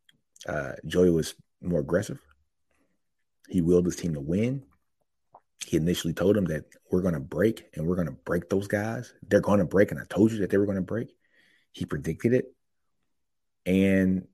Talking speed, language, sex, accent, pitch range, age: 190 wpm, English, male, American, 85-100 Hz, 30-49